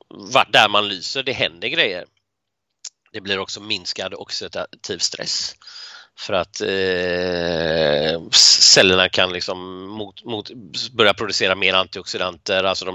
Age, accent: 30-49, native